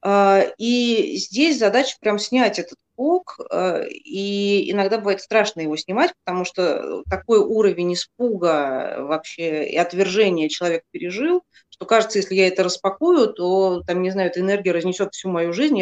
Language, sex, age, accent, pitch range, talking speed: Russian, female, 30-49, native, 170-220 Hz, 150 wpm